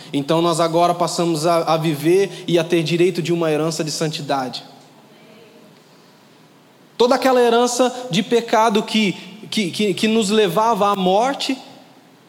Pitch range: 165-225 Hz